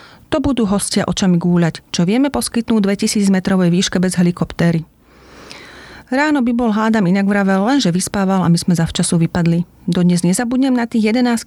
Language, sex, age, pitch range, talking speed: Slovak, female, 40-59, 175-215 Hz, 155 wpm